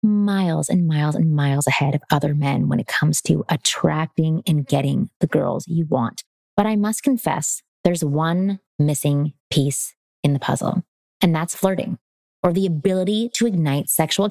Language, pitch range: English, 150-210 Hz